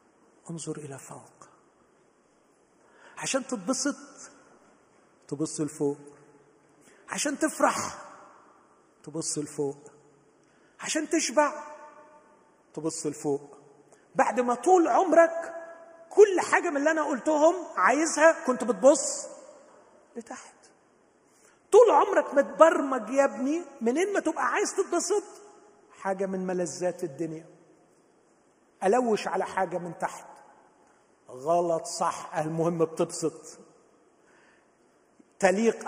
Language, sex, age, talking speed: Arabic, male, 40-59, 90 wpm